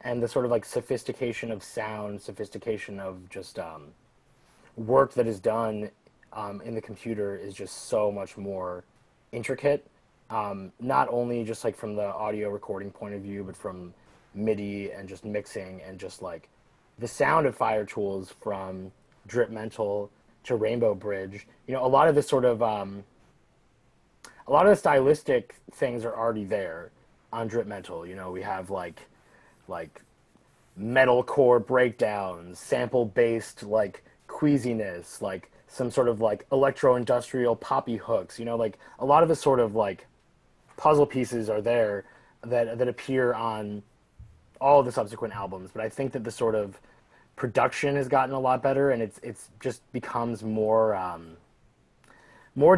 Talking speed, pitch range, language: 160 wpm, 100-125 Hz, English